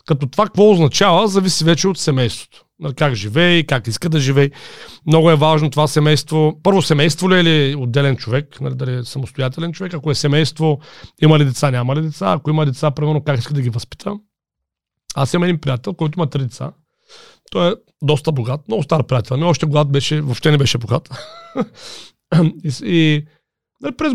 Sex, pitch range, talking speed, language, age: male, 140-195 Hz, 185 wpm, Bulgarian, 40-59